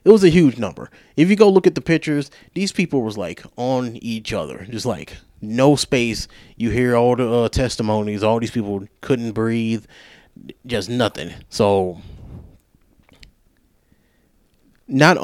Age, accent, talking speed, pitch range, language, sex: 20-39, American, 150 wpm, 105-135 Hz, English, male